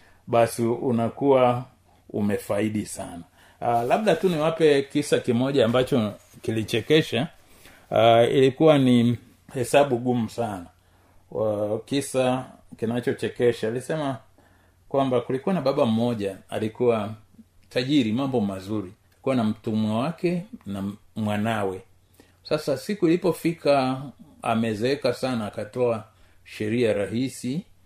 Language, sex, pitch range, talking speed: Swahili, male, 95-125 Hz, 100 wpm